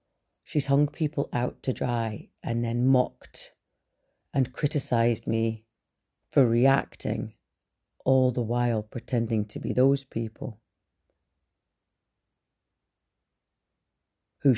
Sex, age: female, 40-59